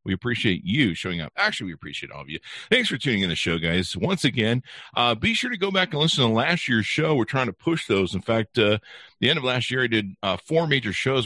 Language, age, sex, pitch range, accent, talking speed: English, 50-69, male, 90-130 Hz, American, 270 wpm